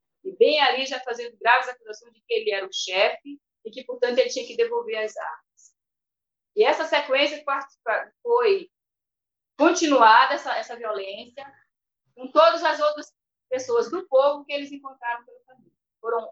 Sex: female